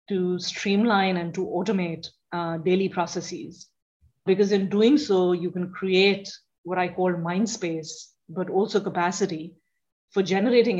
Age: 30-49